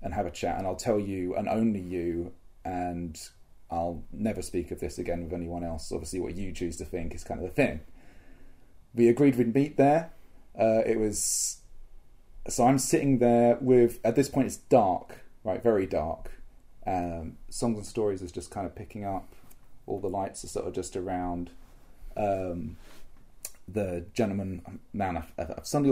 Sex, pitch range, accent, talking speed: male, 90-120 Hz, British, 175 wpm